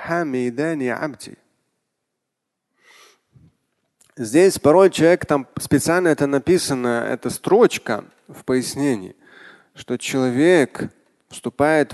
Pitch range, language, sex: 130-165 Hz, Russian, male